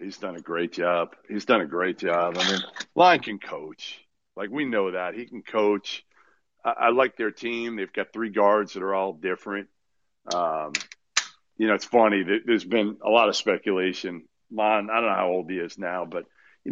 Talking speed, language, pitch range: 205 wpm, English, 100-150 Hz